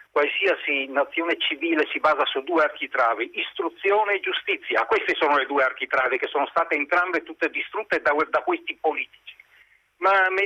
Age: 50-69